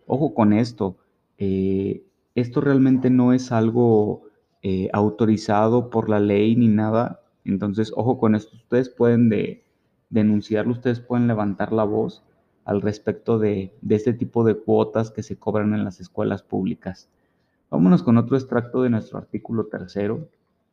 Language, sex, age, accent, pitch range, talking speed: Spanish, male, 30-49, Mexican, 105-125 Hz, 150 wpm